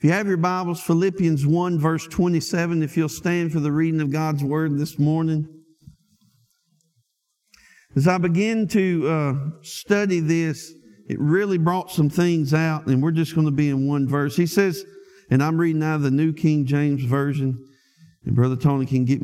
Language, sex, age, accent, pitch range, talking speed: English, male, 50-69, American, 145-195 Hz, 185 wpm